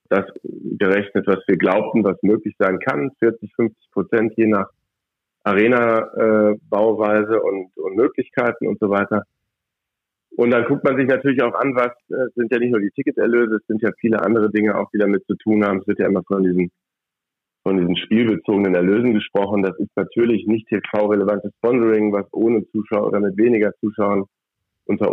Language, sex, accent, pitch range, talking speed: German, male, German, 100-120 Hz, 180 wpm